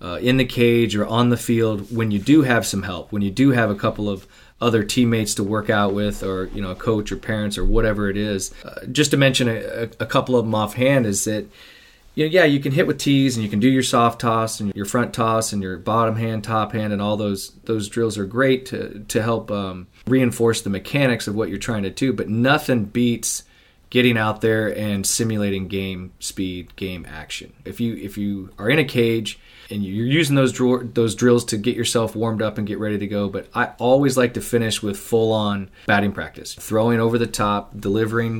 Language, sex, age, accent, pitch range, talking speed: English, male, 20-39, American, 105-120 Hz, 230 wpm